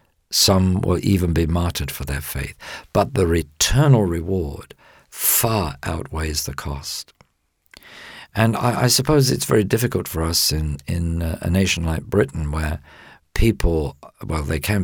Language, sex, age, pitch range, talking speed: English, male, 50-69, 80-100 Hz, 145 wpm